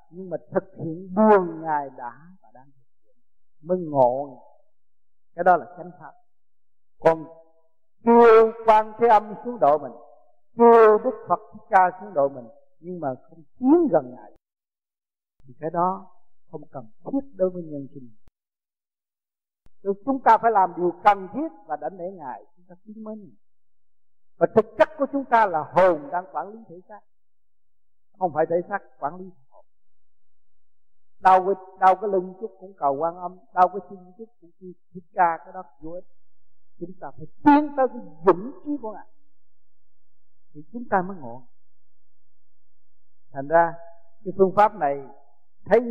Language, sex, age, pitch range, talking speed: Vietnamese, male, 50-69, 140-205 Hz, 165 wpm